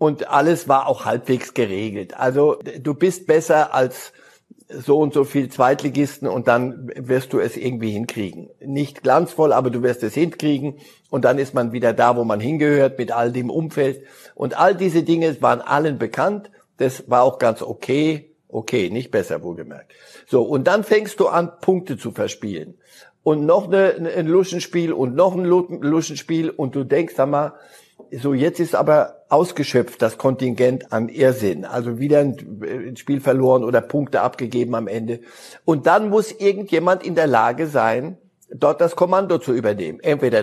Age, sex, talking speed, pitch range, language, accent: 60-79, male, 170 wpm, 125-170 Hz, German, German